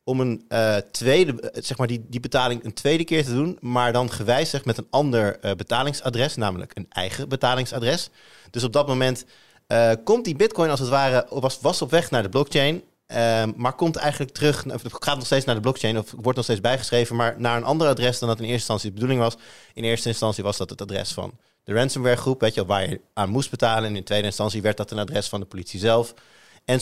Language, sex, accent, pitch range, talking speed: Dutch, male, Dutch, 110-135 Hz, 235 wpm